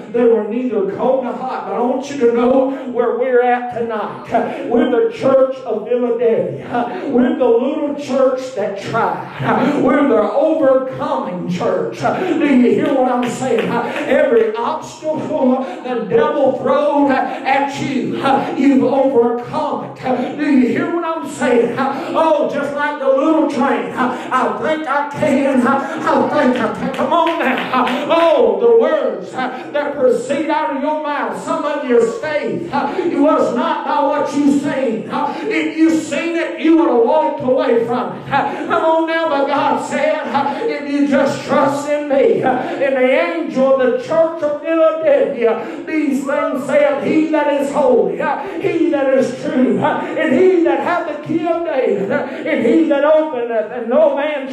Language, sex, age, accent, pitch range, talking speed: English, male, 50-69, American, 255-305 Hz, 165 wpm